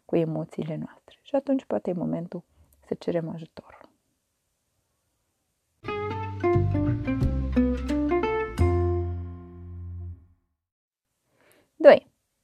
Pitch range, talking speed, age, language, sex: 170-230 Hz, 60 wpm, 20-39, Romanian, female